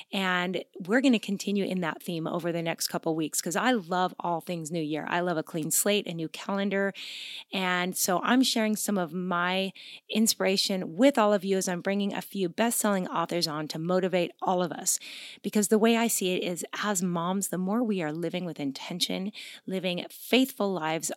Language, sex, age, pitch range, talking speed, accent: English, female, 30-49, 175-220 Hz, 205 wpm, American